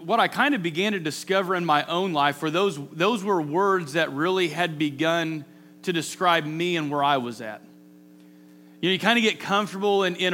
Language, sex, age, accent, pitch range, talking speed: English, male, 30-49, American, 145-205 Hz, 215 wpm